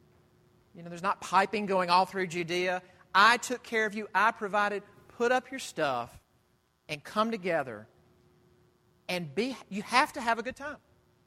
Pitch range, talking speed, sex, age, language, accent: 135-195 Hz, 170 wpm, male, 40-59, English, American